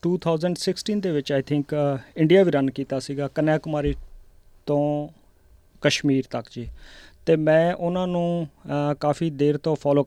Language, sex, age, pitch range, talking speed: Punjabi, male, 30-49, 145-165 Hz, 145 wpm